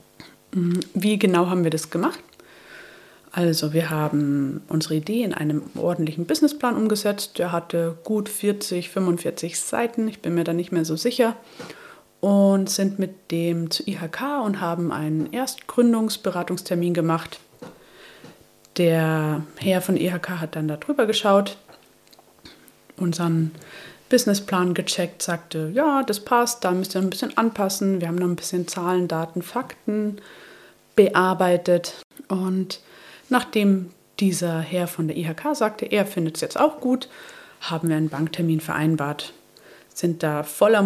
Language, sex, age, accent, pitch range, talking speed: German, female, 30-49, German, 165-205 Hz, 135 wpm